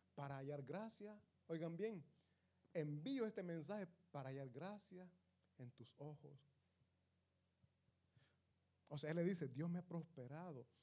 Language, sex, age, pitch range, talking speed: Italian, male, 30-49, 120-175 Hz, 125 wpm